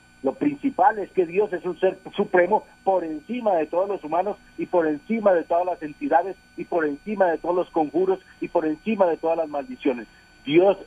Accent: Mexican